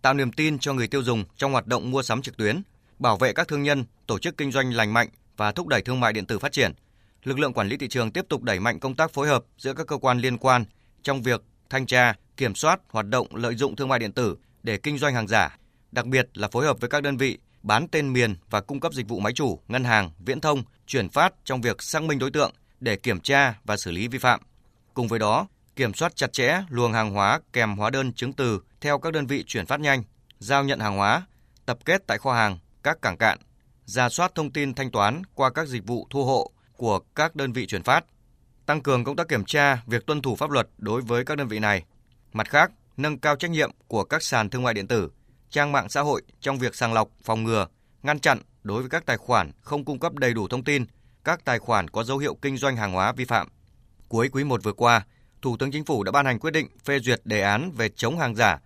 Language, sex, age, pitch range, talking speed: Vietnamese, male, 20-39, 110-140 Hz, 260 wpm